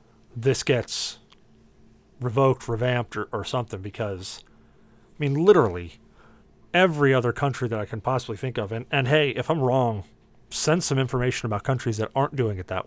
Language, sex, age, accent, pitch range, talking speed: English, male, 40-59, American, 115-145 Hz, 170 wpm